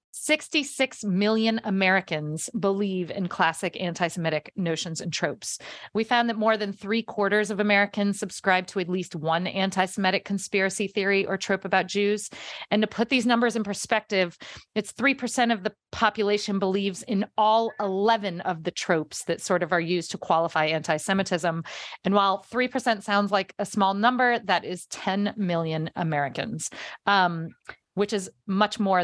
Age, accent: 40-59, American